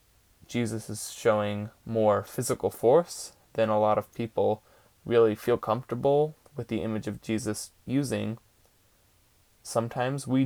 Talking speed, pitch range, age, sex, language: 125 wpm, 105-120 Hz, 20-39, male, English